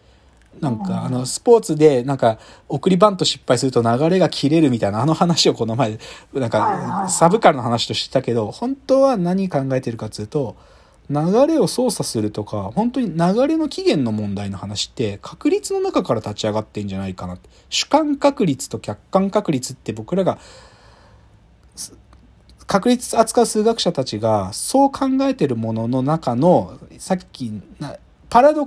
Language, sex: Japanese, male